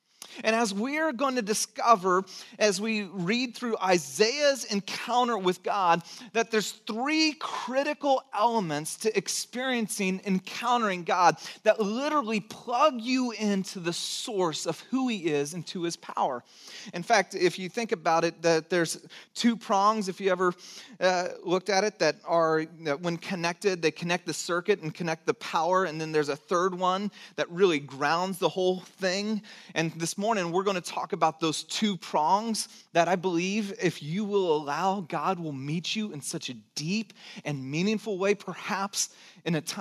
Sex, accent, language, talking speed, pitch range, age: male, American, English, 170 wpm, 160-215 Hz, 30-49